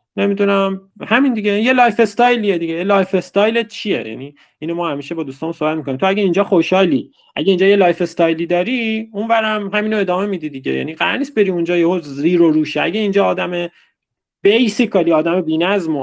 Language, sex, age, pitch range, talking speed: Persian, male, 30-49, 145-195 Hz, 185 wpm